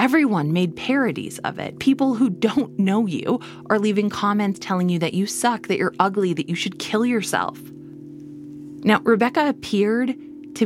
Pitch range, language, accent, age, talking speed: 160-225 Hz, English, American, 30-49, 170 wpm